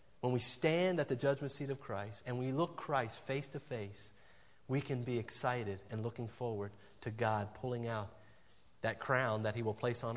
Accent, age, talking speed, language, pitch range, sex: American, 30-49, 200 wpm, English, 110-140 Hz, male